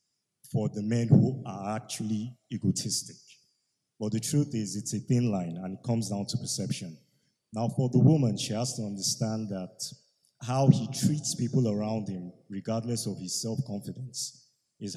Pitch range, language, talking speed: 110-135 Hz, English, 165 wpm